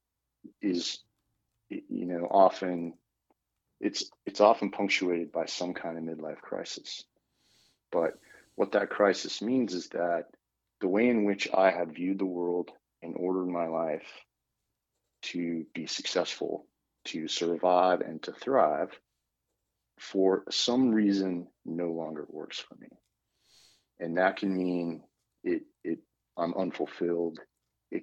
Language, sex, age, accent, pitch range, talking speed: English, male, 40-59, American, 80-90 Hz, 125 wpm